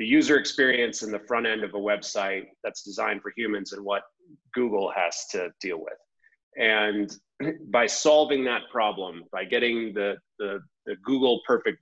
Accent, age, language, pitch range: American, 30-49, English, 105-145 Hz